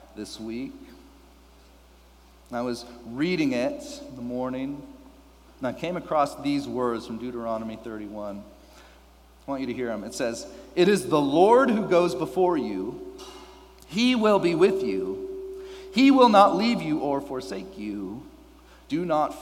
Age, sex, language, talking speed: 40-59, male, English, 150 wpm